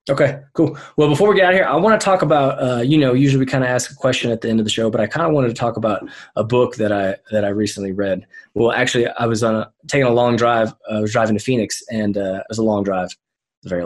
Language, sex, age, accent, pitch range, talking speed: English, male, 20-39, American, 110-140 Hz, 305 wpm